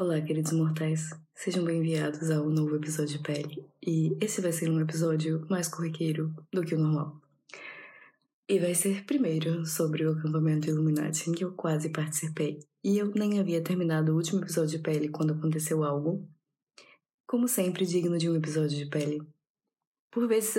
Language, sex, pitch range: Portuguese, female, 155-185 Hz